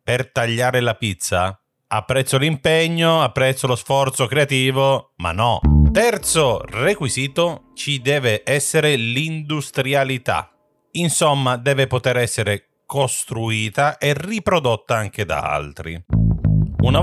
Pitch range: 110-145 Hz